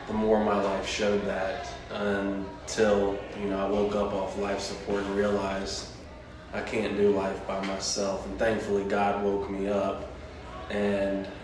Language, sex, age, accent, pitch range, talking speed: English, male, 20-39, American, 95-105 Hz, 155 wpm